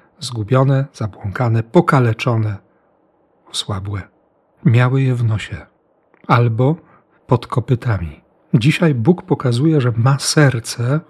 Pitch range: 115-145 Hz